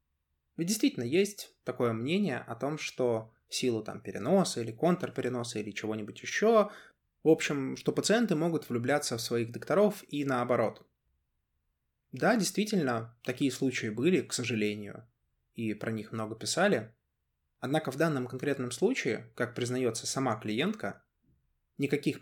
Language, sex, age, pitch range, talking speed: Russian, male, 20-39, 105-140 Hz, 135 wpm